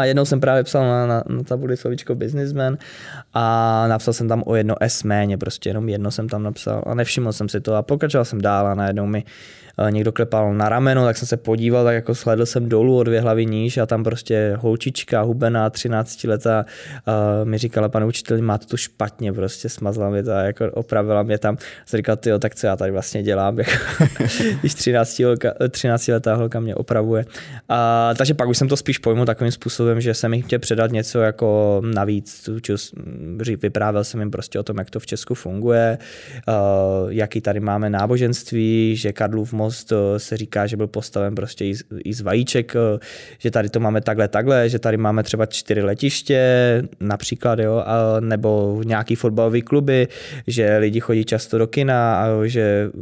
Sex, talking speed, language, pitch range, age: male, 185 wpm, Czech, 110-125 Hz, 20-39